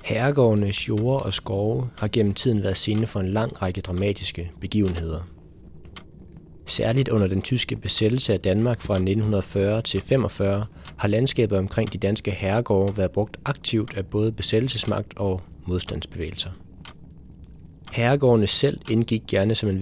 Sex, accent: male, native